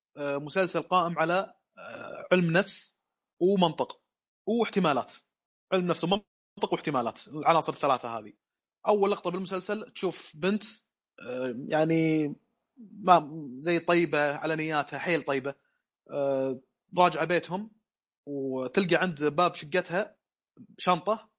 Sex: male